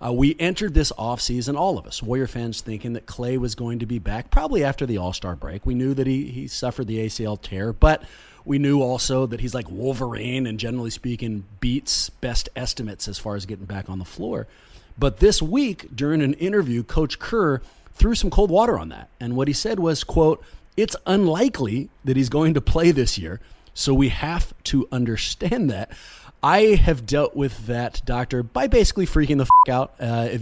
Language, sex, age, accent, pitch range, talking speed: English, male, 30-49, American, 110-150 Hz, 205 wpm